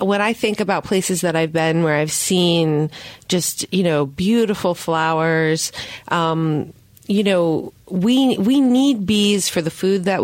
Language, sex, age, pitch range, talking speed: English, female, 30-49, 155-185 Hz, 160 wpm